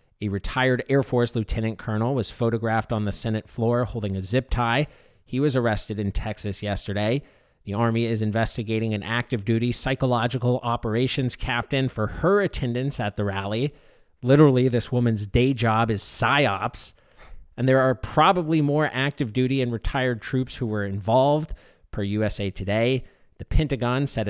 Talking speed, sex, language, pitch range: 155 wpm, male, English, 110-130 Hz